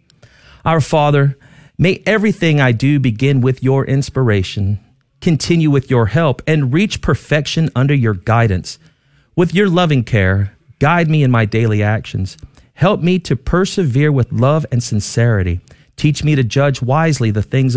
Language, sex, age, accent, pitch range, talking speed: English, male, 40-59, American, 115-150 Hz, 150 wpm